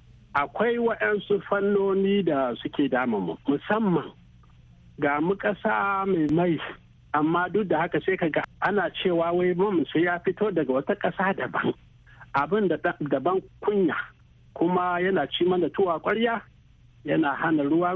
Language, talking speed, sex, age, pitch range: English, 115 wpm, male, 60-79, 140-195 Hz